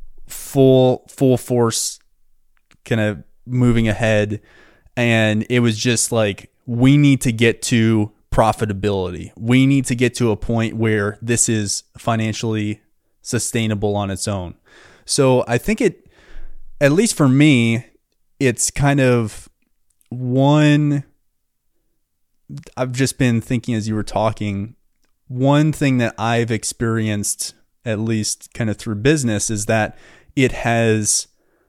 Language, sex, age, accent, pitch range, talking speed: English, male, 20-39, American, 110-130 Hz, 130 wpm